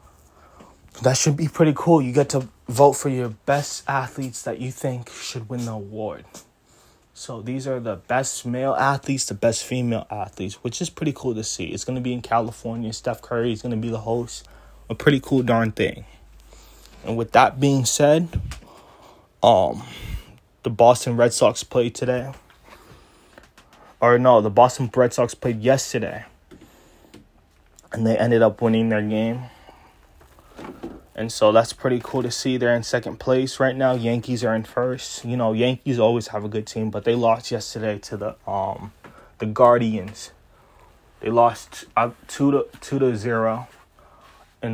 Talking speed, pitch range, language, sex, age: 170 wpm, 110-125 Hz, English, male, 20-39